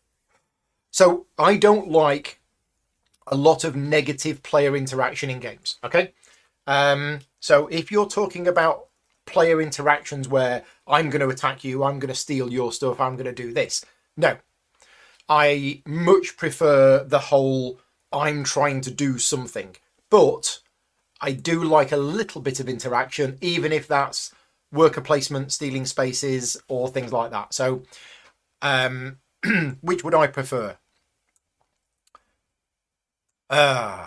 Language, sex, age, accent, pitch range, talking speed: English, male, 30-49, British, 130-160 Hz, 130 wpm